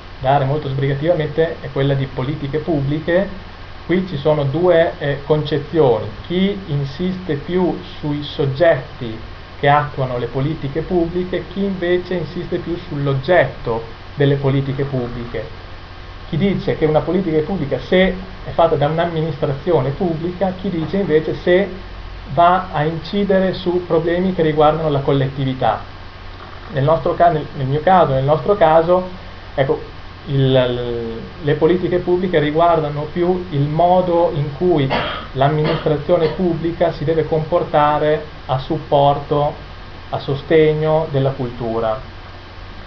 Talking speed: 120 wpm